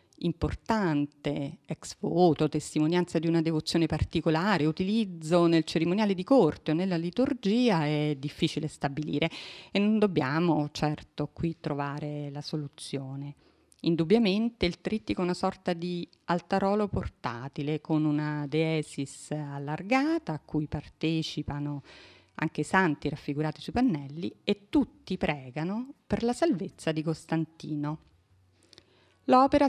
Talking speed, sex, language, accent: 115 wpm, female, Italian, native